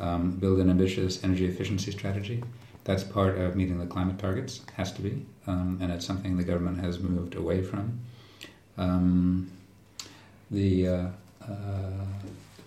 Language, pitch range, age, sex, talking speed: English, 90-105 Hz, 50-69, male, 145 wpm